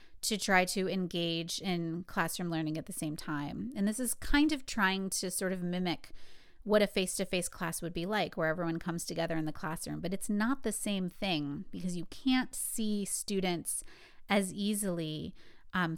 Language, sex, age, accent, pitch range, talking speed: English, female, 30-49, American, 170-205 Hz, 185 wpm